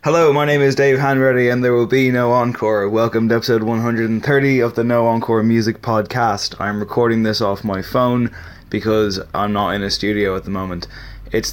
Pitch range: 105-120 Hz